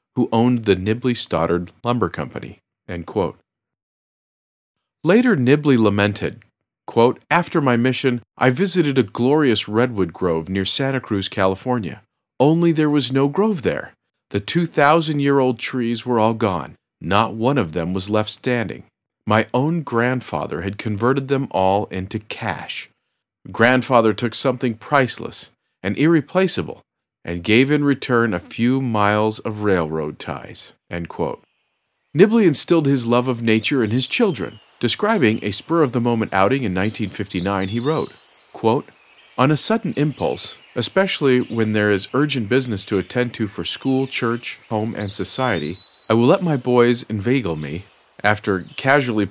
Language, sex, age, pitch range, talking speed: English, male, 40-59, 100-135 Hz, 145 wpm